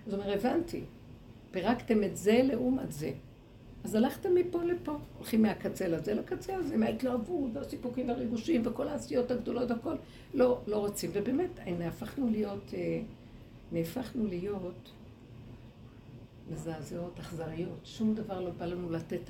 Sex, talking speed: female, 130 wpm